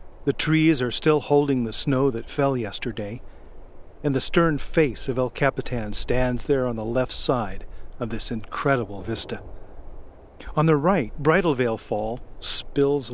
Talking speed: 155 wpm